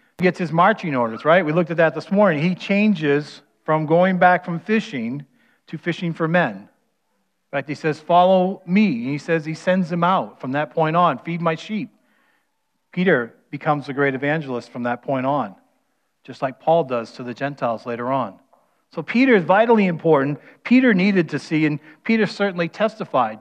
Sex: male